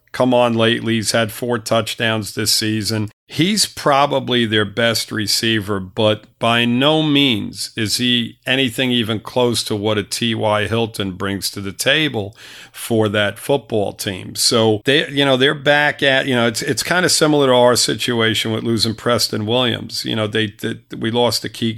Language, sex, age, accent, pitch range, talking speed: English, male, 50-69, American, 110-125 Hz, 180 wpm